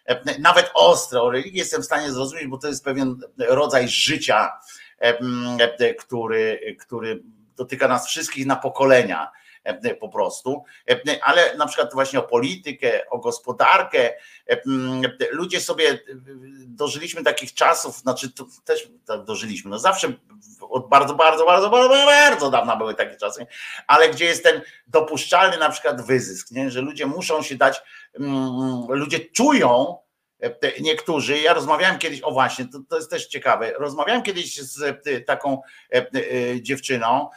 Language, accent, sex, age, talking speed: Polish, native, male, 50-69, 130 wpm